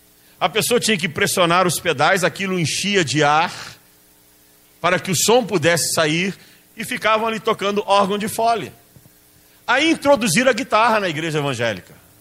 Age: 50-69